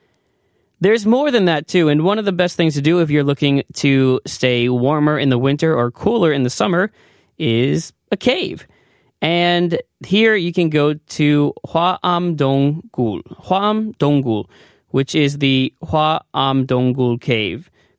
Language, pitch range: Korean, 130-165 Hz